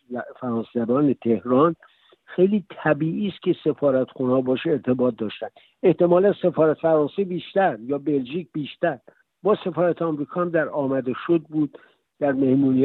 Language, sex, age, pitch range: Persian, male, 60-79, 130-165 Hz